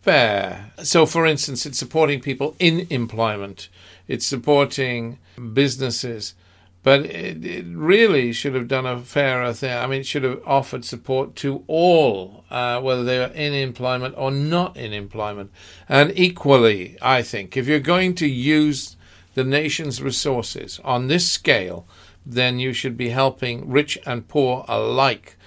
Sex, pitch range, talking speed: male, 110-145 Hz, 150 wpm